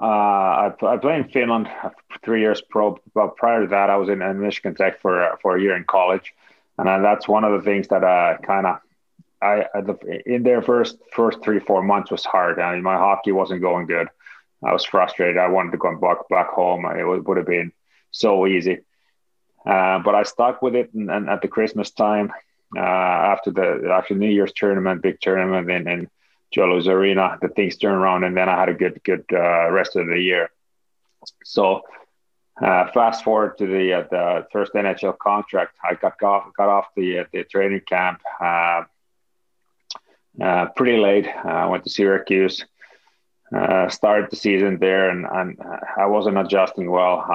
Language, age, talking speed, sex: English, 30-49, 195 wpm, male